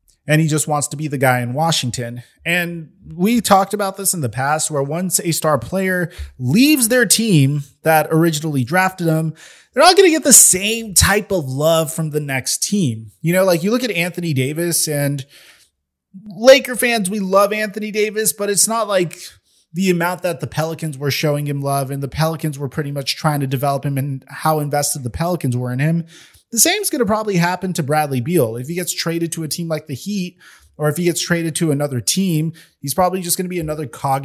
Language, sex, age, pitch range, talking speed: English, male, 20-39, 145-205 Hz, 220 wpm